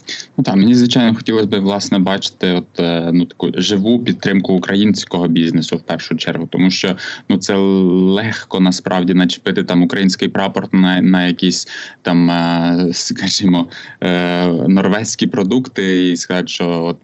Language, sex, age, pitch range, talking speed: Ukrainian, male, 20-39, 85-95 Hz, 135 wpm